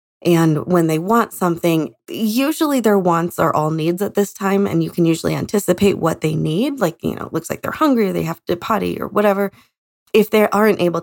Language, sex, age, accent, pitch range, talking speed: English, female, 20-39, American, 170-220 Hz, 225 wpm